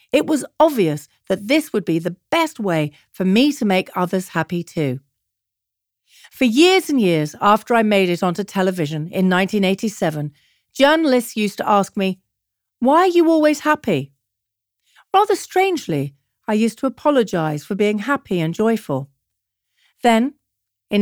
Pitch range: 165-240 Hz